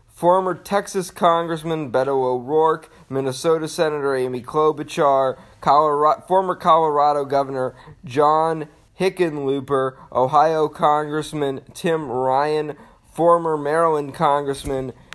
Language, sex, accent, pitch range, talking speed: English, male, American, 130-160 Hz, 85 wpm